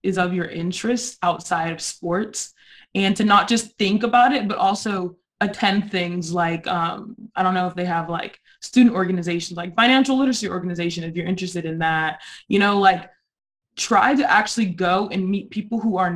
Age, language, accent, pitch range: 20-39, English, American, 175-215 Hz